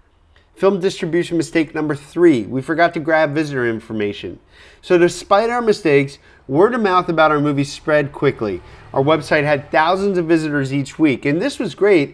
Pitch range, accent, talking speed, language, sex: 140-185 Hz, American, 175 wpm, English, male